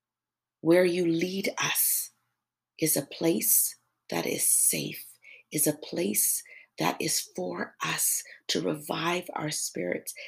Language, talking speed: English, 125 wpm